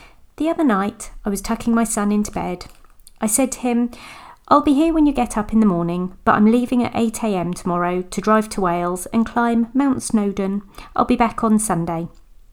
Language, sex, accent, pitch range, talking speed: English, female, British, 190-245 Hz, 205 wpm